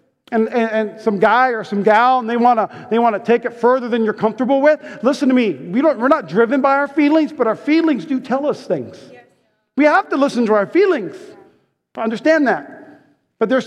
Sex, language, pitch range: male, English, 225-295 Hz